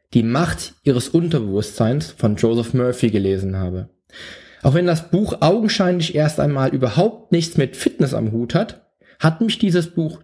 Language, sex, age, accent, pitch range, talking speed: German, male, 20-39, German, 120-160 Hz, 160 wpm